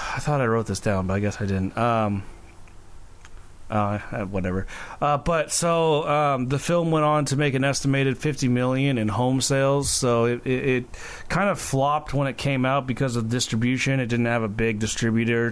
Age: 30-49